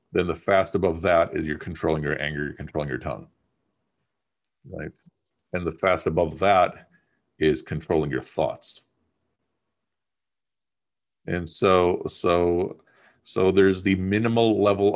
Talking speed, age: 130 wpm, 50-69